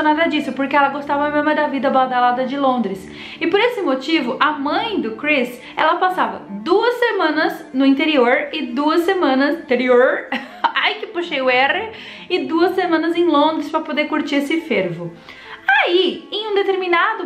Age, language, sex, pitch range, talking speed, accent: 20-39, Portuguese, female, 270-345 Hz, 170 wpm, Brazilian